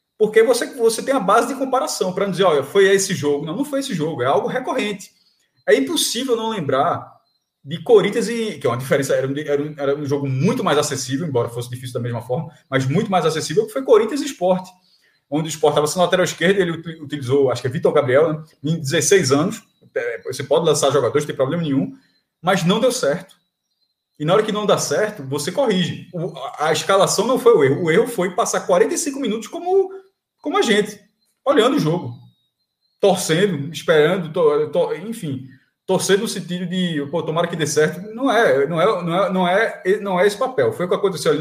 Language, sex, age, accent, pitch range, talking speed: Portuguese, male, 20-39, Brazilian, 155-245 Hz, 210 wpm